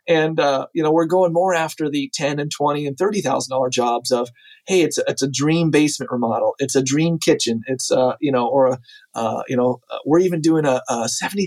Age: 40-59